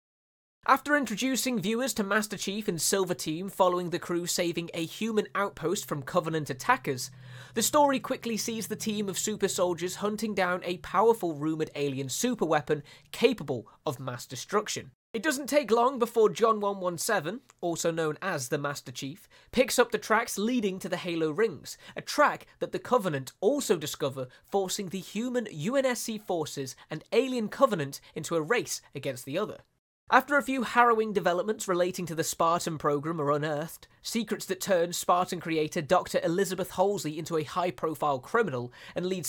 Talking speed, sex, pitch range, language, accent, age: 165 wpm, male, 155-210 Hz, Danish, British, 20-39